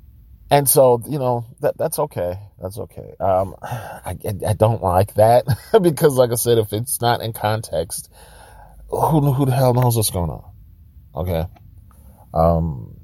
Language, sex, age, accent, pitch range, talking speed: English, male, 30-49, American, 80-110 Hz, 150 wpm